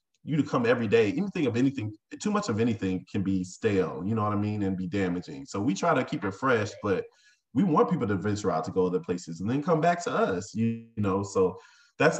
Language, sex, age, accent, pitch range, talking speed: English, male, 20-39, American, 95-105 Hz, 250 wpm